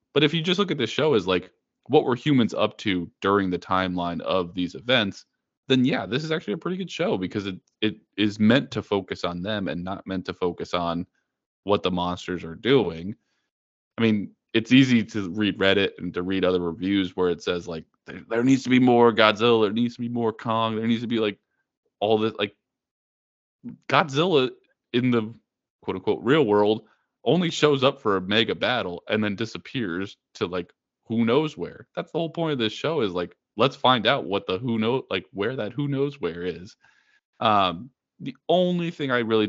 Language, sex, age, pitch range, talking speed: English, male, 20-39, 95-130 Hz, 210 wpm